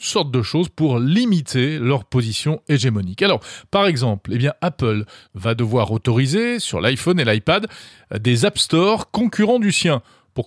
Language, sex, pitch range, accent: French, male, 120-170 Hz, French